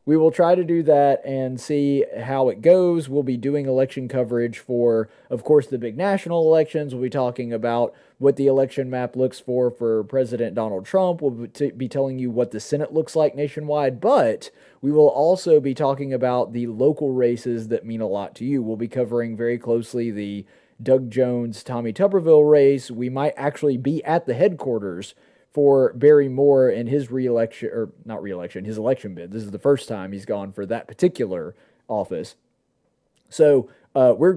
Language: English